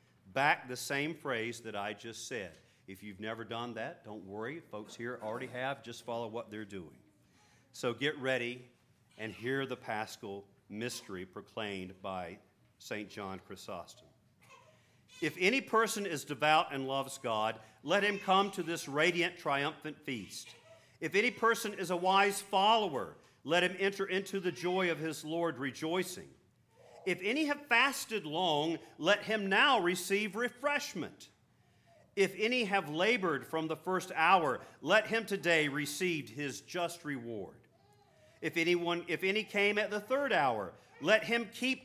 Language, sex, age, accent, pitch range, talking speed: English, male, 50-69, American, 125-195 Hz, 150 wpm